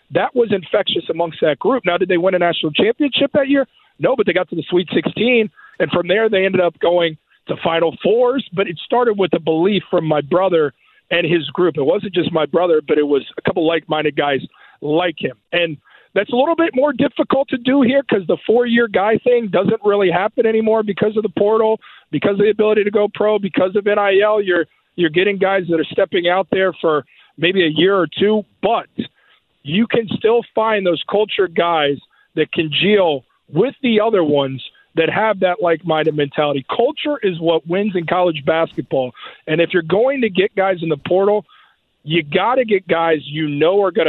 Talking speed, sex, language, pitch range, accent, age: 210 wpm, male, English, 165-220 Hz, American, 50-69